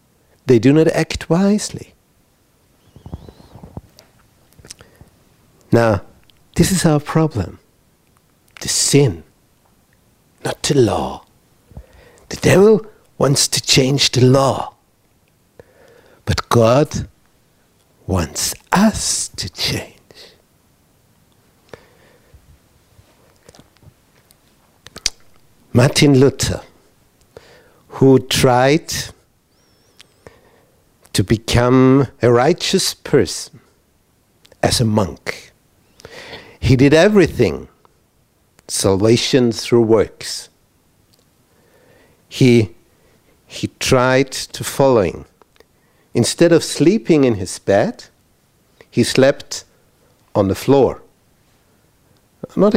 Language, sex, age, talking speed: English, male, 60-79, 70 wpm